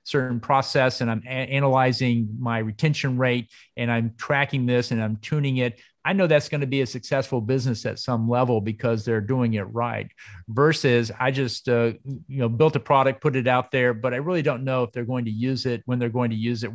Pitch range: 115-140 Hz